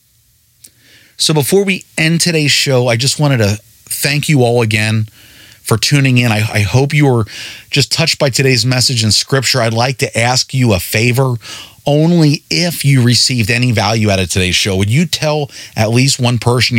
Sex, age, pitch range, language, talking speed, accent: male, 30-49, 115-150 Hz, English, 190 wpm, American